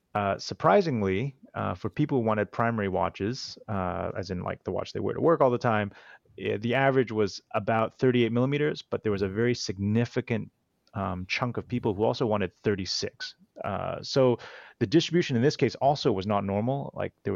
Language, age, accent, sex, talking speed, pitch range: English, 30-49, American, male, 190 wpm, 100-125 Hz